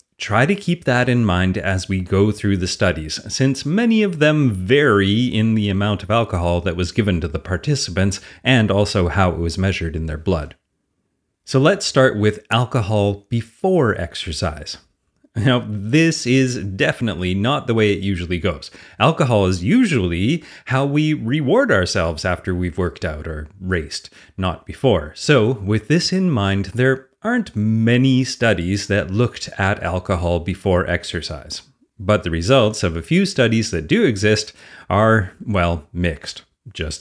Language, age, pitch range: English, 30-49, 90-120 Hz